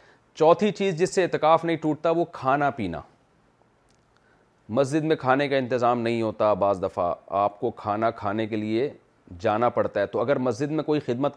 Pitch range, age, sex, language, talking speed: 120-165 Hz, 40-59, male, Urdu, 180 wpm